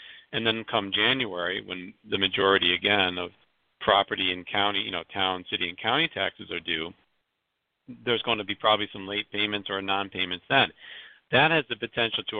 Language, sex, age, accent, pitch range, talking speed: English, male, 50-69, American, 95-110 Hz, 180 wpm